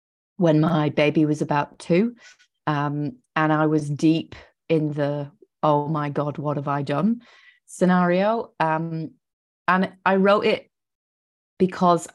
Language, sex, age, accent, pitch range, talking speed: English, female, 30-49, British, 150-190 Hz, 135 wpm